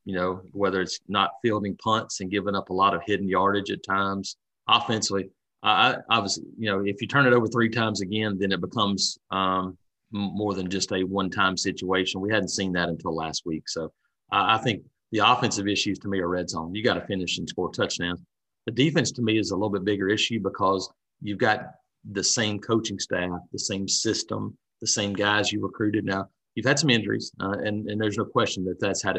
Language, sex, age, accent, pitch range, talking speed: English, male, 40-59, American, 95-110 Hz, 215 wpm